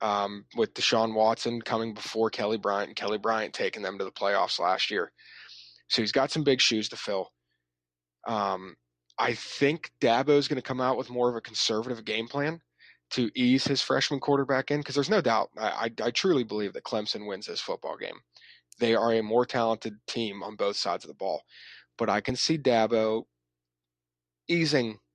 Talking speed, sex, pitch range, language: 190 wpm, male, 105-130 Hz, English